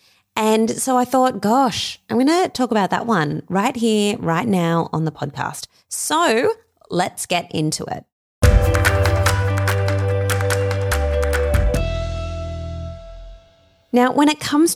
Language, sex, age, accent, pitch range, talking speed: English, female, 20-39, Australian, 160-235 Hz, 115 wpm